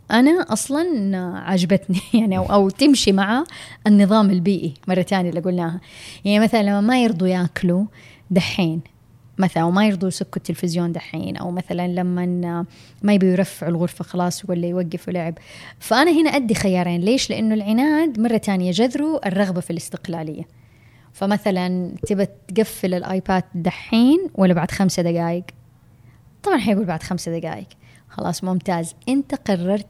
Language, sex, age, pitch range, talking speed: Arabic, female, 20-39, 175-210 Hz, 135 wpm